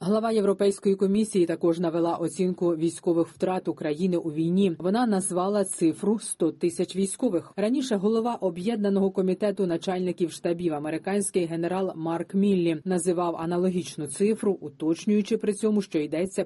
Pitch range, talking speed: 165-205 Hz, 130 wpm